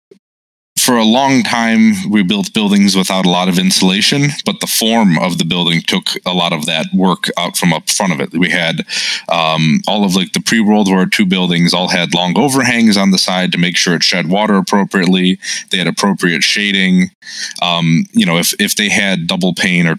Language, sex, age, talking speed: English, male, 20-39, 205 wpm